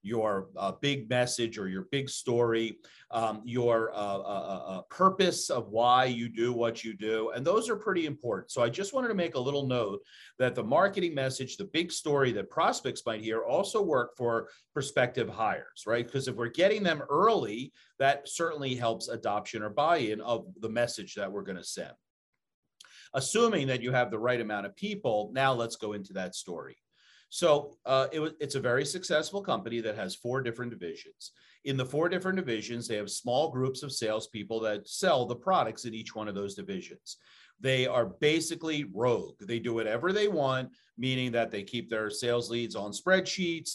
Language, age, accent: English, 40-59, American